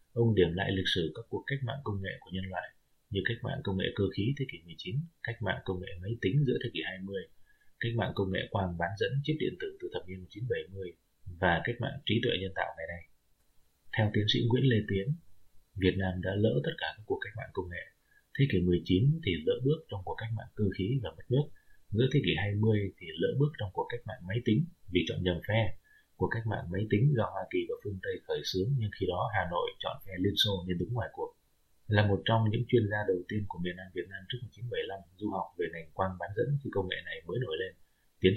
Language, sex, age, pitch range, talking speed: Vietnamese, male, 20-39, 95-130 Hz, 255 wpm